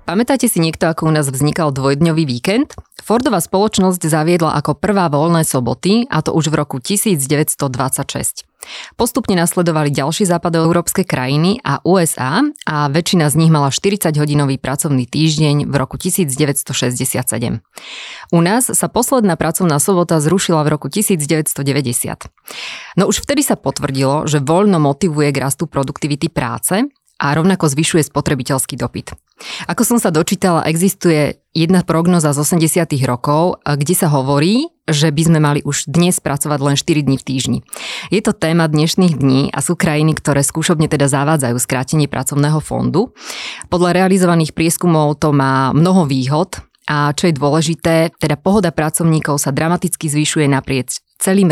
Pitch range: 145-175 Hz